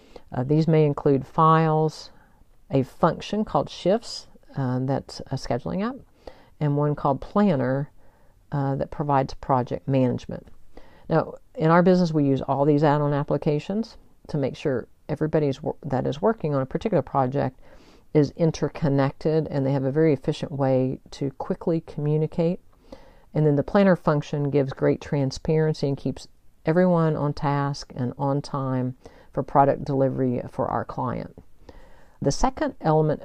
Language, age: English, 50-69